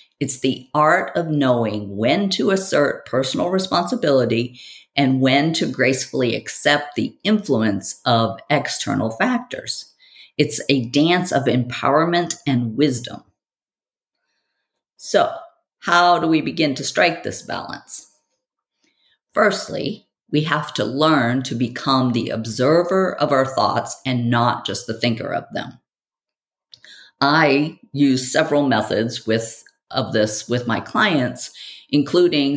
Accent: American